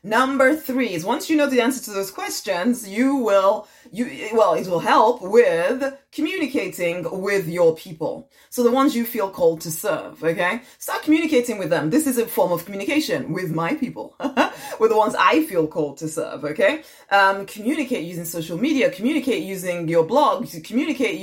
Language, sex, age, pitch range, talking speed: English, female, 20-39, 180-265 Hz, 180 wpm